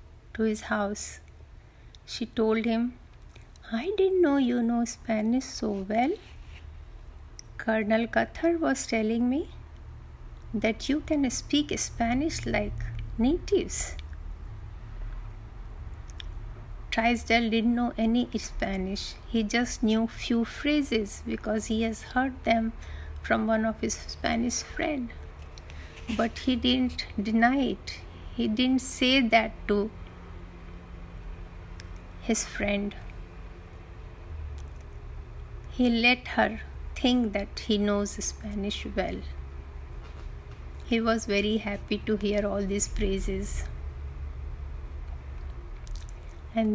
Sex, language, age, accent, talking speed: female, Hindi, 50-69, native, 100 wpm